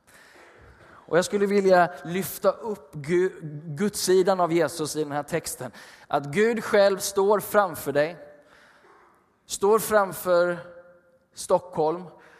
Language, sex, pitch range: Swedish, male, 145-190 Hz